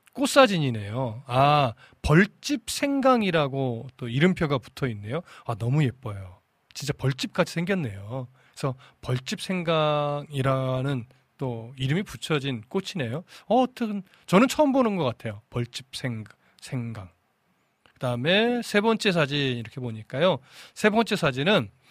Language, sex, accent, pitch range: Korean, male, native, 125-180 Hz